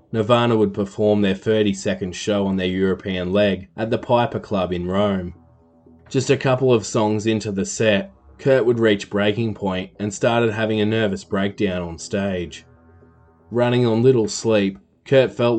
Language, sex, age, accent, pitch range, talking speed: English, male, 20-39, Australian, 95-115 Hz, 165 wpm